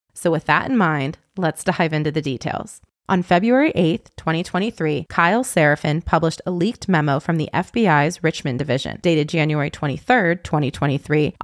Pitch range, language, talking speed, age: 150-185 Hz, English, 150 wpm, 20-39